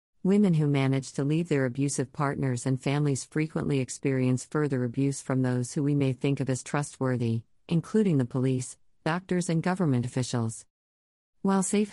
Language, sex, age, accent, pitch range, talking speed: English, female, 50-69, American, 130-160 Hz, 160 wpm